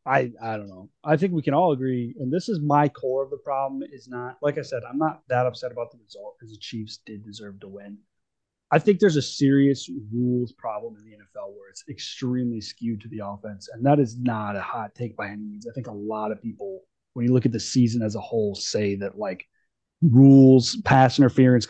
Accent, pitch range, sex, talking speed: American, 115-145 Hz, male, 235 wpm